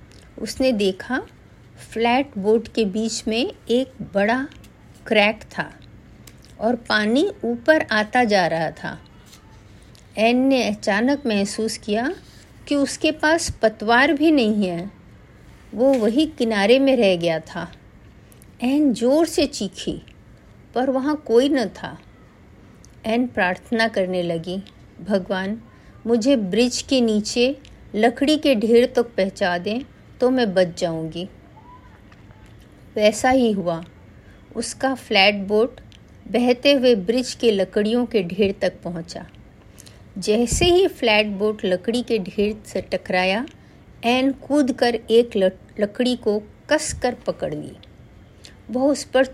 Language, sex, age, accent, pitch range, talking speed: Hindi, female, 50-69, native, 195-255 Hz, 125 wpm